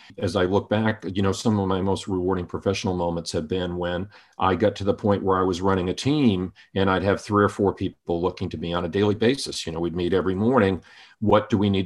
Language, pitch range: English, 90-110 Hz